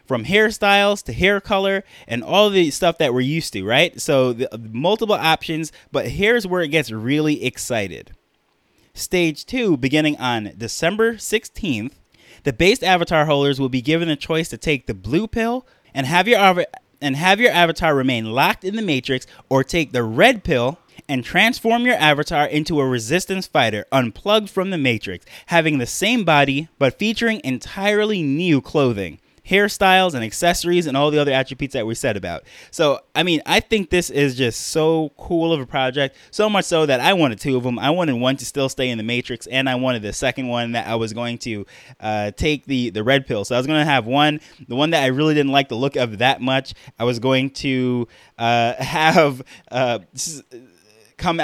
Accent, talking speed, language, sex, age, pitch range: American, 200 wpm, English, male, 20-39, 125-165 Hz